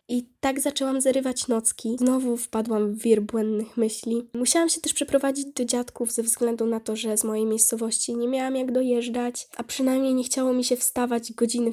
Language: Polish